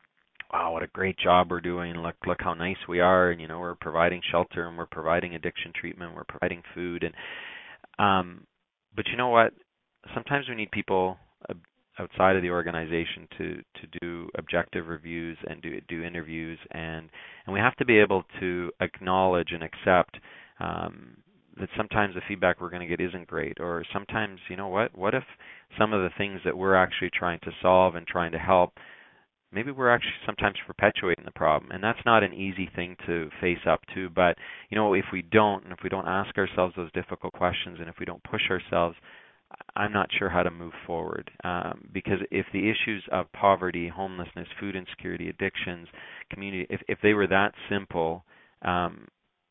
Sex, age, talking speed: male, 30-49, 190 wpm